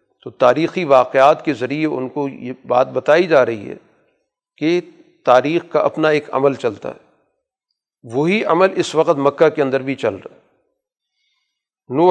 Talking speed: 165 wpm